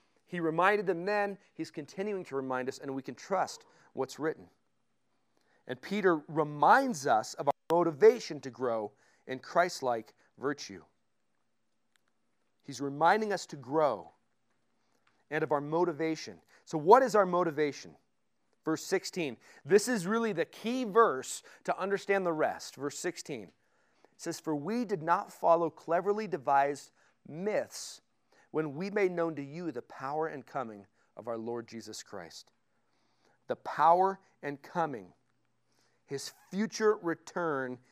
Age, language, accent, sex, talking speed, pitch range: 40-59, English, American, male, 140 wpm, 140-190 Hz